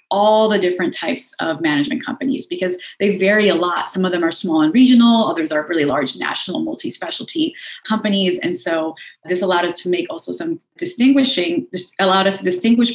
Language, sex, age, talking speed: English, female, 30-49, 190 wpm